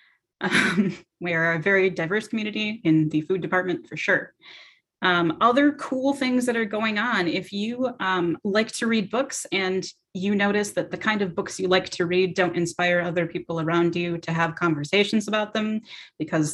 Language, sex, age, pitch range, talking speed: English, female, 30-49, 160-200 Hz, 190 wpm